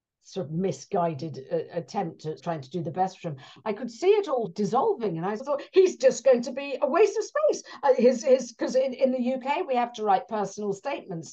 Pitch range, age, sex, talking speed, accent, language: 205-270 Hz, 50-69, female, 240 wpm, British, English